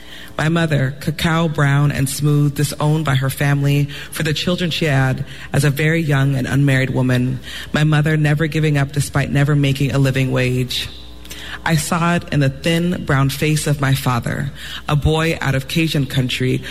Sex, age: female, 30-49